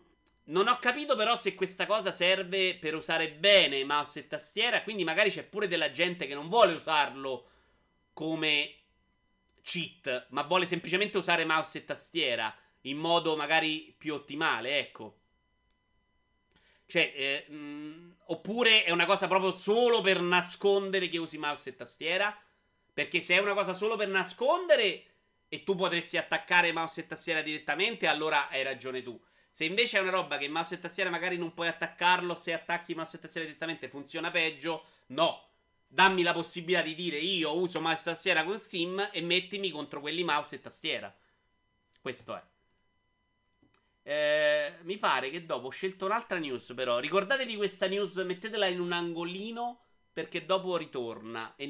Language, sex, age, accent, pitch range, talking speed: Italian, male, 30-49, native, 155-195 Hz, 160 wpm